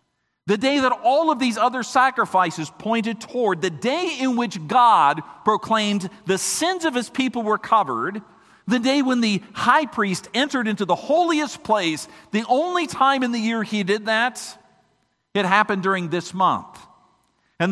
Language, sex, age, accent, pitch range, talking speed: English, male, 50-69, American, 180-235 Hz, 165 wpm